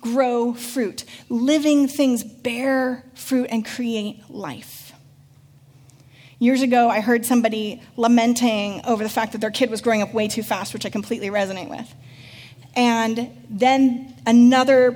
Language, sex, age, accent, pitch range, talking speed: English, female, 30-49, American, 215-270 Hz, 140 wpm